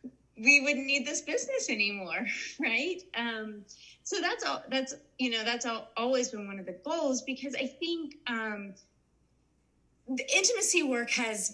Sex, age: female, 30-49